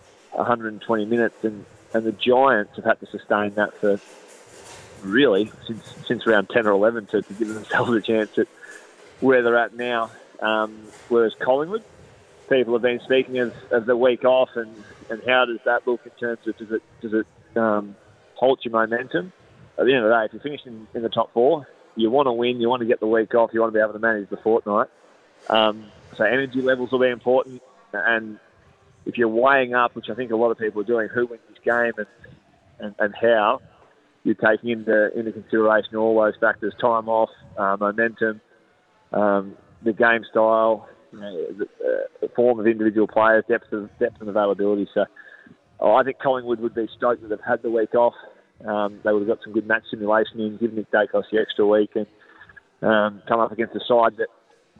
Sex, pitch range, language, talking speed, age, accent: male, 110-125 Hz, English, 210 wpm, 20-39, Australian